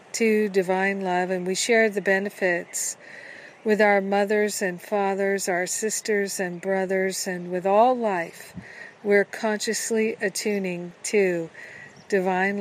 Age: 50-69